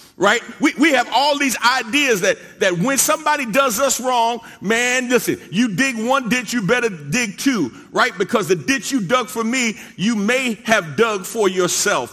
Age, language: 40-59, English